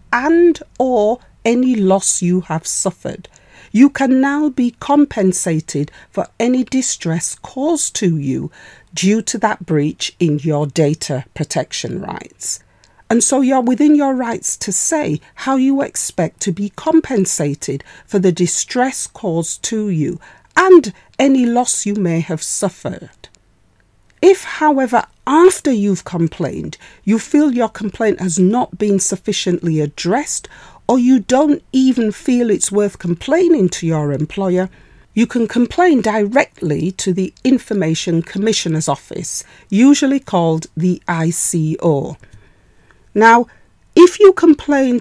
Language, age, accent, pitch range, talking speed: English, 40-59, British, 170-260 Hz, 130 wpm